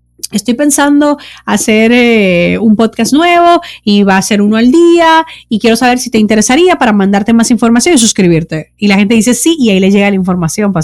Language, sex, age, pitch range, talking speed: Spanish, female, 30-49, 185-240 Hz, 210 wpm